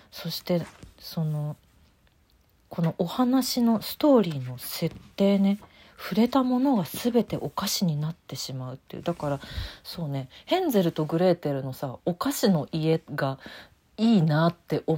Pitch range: 145-195 Hz